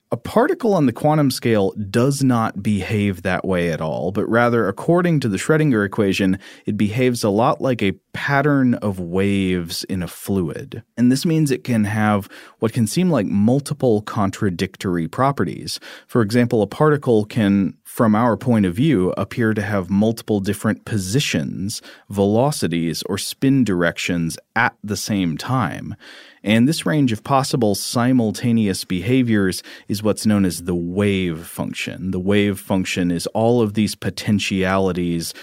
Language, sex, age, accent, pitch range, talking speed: English, male, 30-49, American, 95-125 Hz, 155 wpm